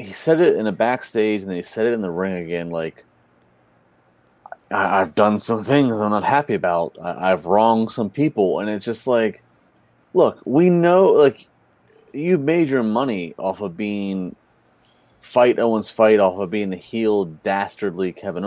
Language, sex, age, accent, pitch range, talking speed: English, male, 30-49, American, 95-120 Hz, 175 wpm